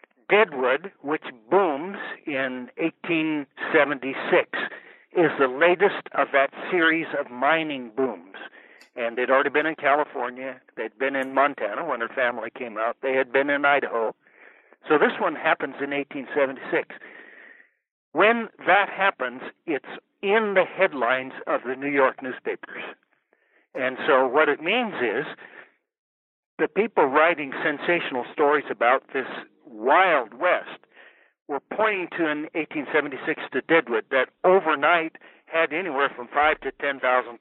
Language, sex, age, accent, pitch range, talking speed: English, male, 60-79, American, 130-165 Hz, 130 wpm